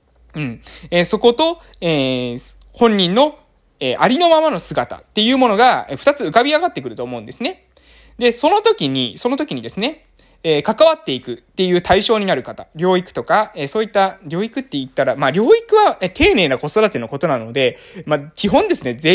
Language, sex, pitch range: Japanese, male, 130-205 Hz